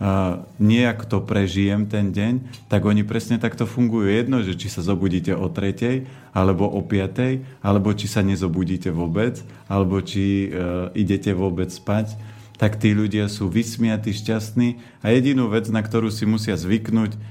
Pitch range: 100-110 Hz